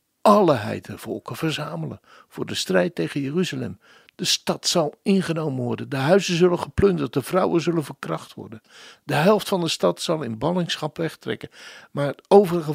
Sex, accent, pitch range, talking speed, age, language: male, Dutch, 125-180 Hz, 160 wpm, 60-79, Dutch